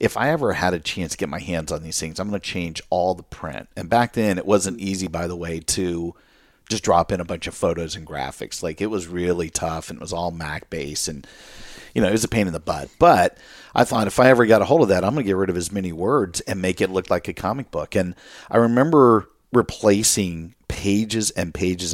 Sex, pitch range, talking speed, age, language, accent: male, 85-100 Hz, 260 wpm, 50-69, English, American